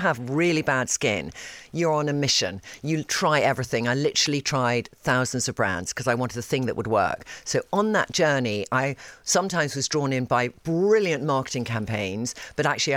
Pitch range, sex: 125-170 Hz, female